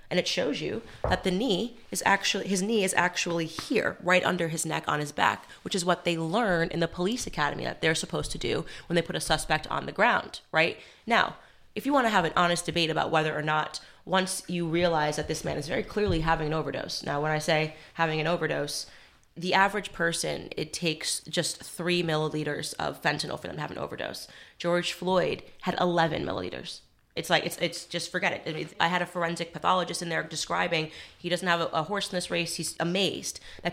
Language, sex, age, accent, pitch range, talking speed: English, female, 20-39, American, 160-195 Hz, 220 wpm